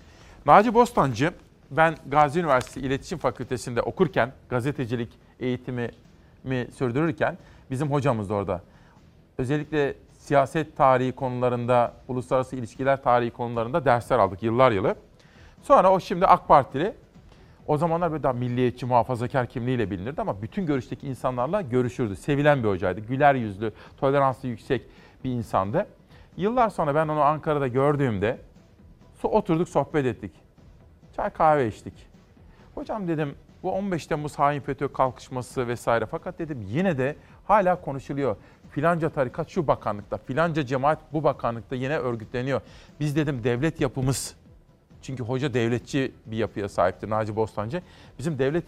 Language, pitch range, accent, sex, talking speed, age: Turkish, 120-155 Hz, native, male, 130 wpm, 40-59